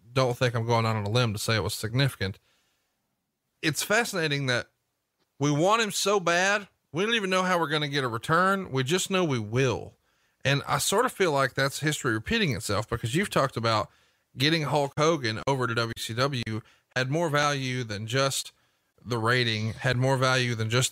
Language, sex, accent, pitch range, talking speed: English, male, American, 115-150 Hz, 200 wpm